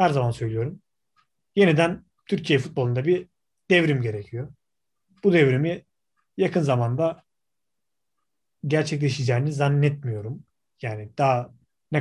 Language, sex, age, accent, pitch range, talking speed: Turkish, male, 30-49, native, 120-165 Hz, 90 wpm